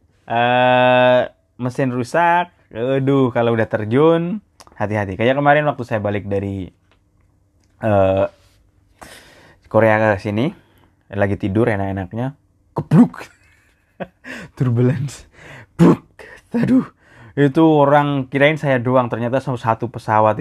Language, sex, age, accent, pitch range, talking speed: Indonesian, male, 20-39, native, 100-130 Hz, 100 wpm